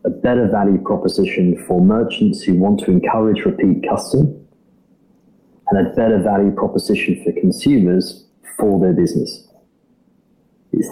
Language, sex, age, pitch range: English, male, 30-49, 95-110 Hz